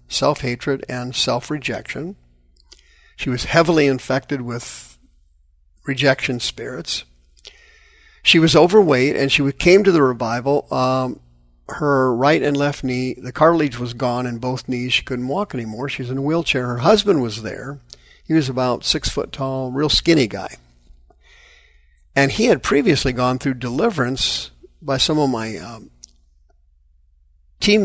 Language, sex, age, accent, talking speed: English, male, 50-69, American, 145 wpm